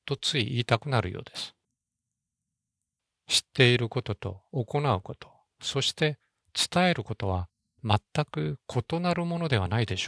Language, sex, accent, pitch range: Japanese, male, native, 105-145 Hz